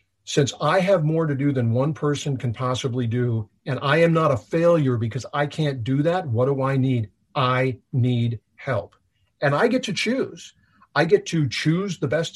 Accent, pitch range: American, 125-165 Hz